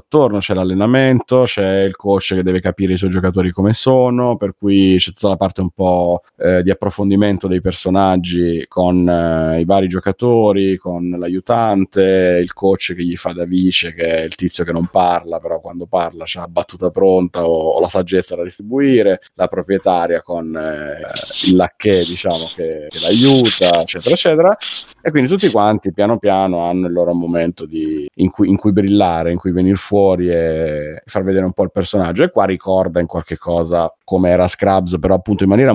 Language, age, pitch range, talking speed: Italian, 30-49, 90-100 Hz, 190 wpm